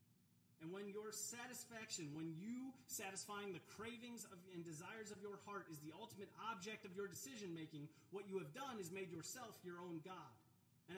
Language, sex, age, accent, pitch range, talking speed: English, male, 30-49, American, 180-240 Hz, 185 wpm